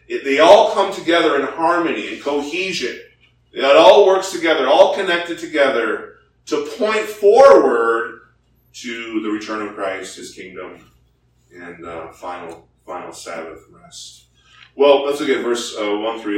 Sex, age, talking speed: male, 30-49, 145 wpm